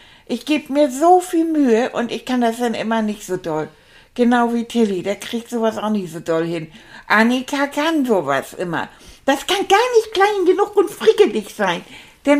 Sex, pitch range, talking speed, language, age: female, 210-280 Hz, 195 wpm, German, 60-79